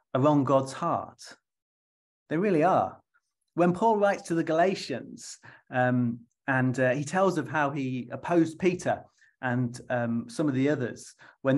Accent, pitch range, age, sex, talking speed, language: British, 125-160 Hz, 30-49, male, 150 wpm, English